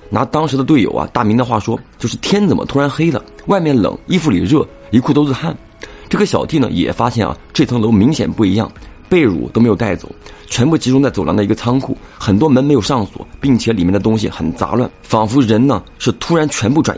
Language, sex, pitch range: Chinese, male, 95-135 Hz